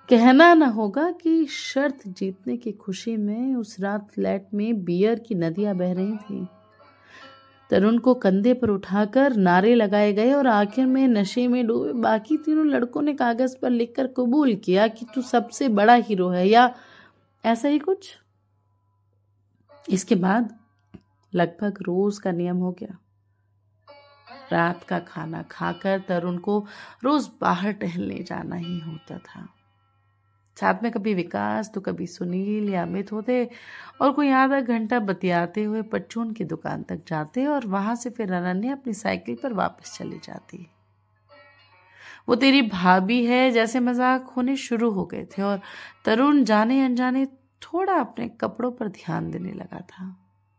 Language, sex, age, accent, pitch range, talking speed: Hindi, female, 30-49, native, 175-250 Hz, 150 wpm